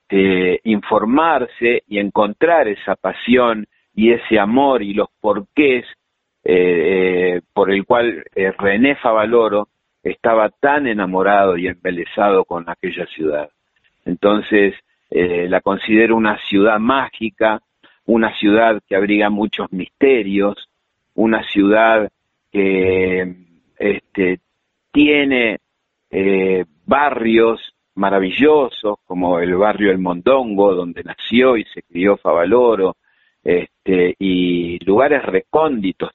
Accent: Argentinian